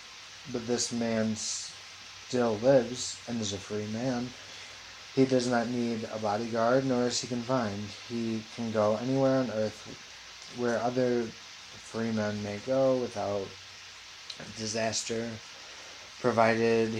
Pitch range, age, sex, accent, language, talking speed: 105-120 Hz, 20-39, male, American, English, 125 wpm